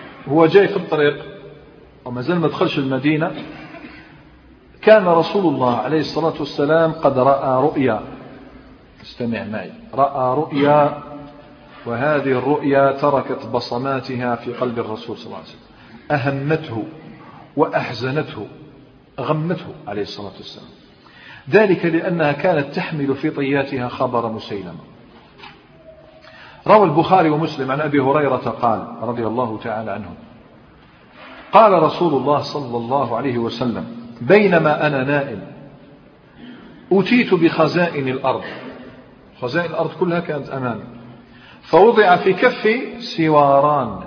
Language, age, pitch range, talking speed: Arabic, 50-69, 130-160 Hz, 110 wpm